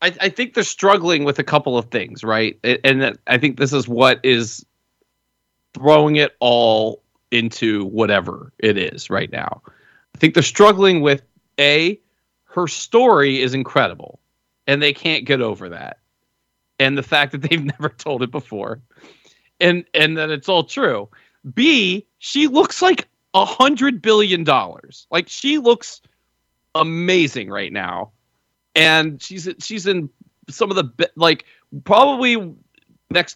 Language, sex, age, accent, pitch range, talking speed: English, male, 40-59, American, 130-210 Hz, 145 wpm